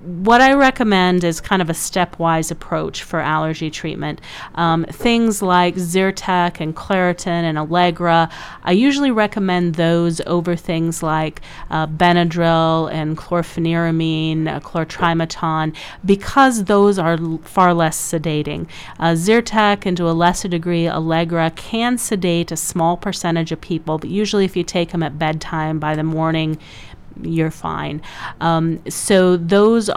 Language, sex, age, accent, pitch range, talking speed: English, female, 40-59, American, 160-190 Hz, 140 wpm